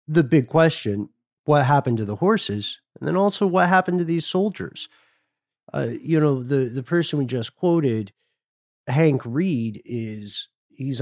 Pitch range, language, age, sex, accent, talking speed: 105-145 Hz, English, 40-59, male, American, 160 wpm